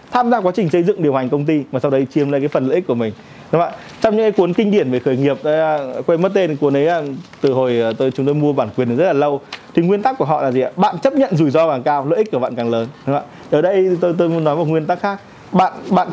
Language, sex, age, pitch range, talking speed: Vietnamese, male, 20-39, 140-195 Hz, 300 wpm